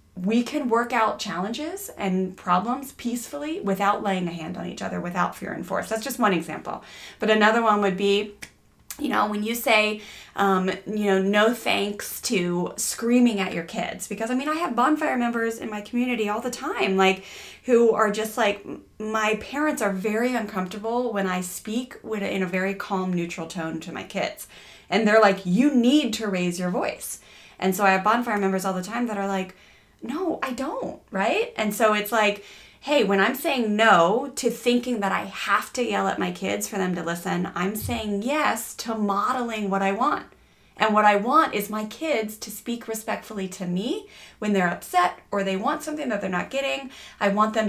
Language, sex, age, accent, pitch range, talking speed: English, female, 20-39, American, 190-230 Hz, 205 wpm